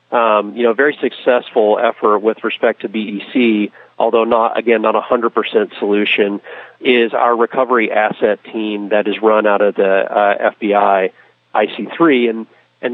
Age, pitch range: 40-59, 105-120 Hz